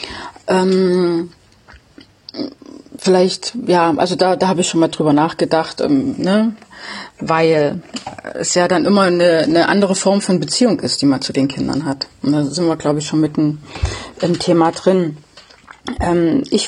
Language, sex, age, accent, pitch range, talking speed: German, female, 30-49, German, 150-190 Hz, 160 wpm